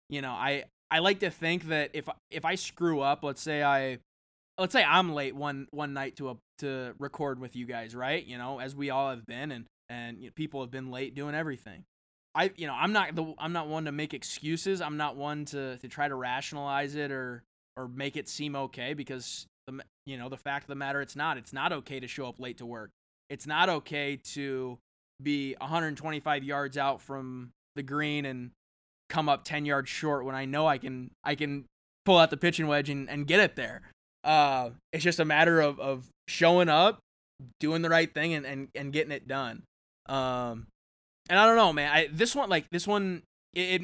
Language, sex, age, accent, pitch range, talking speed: English, male, 20-39, American, 130-155 Hz, 220 wpm